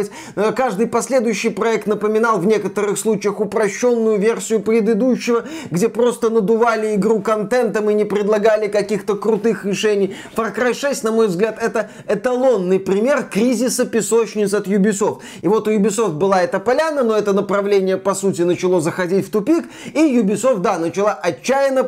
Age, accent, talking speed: 20-39, native, 150 wpm